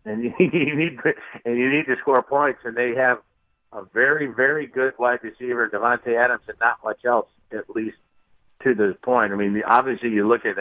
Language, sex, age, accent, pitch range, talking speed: English, male, 60-79, American, 105-125 Hz, 205 wpm